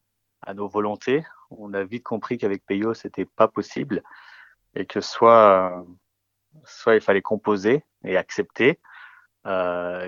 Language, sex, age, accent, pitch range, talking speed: French, male, 30-49, French, 95-120 Hz, 130 wpm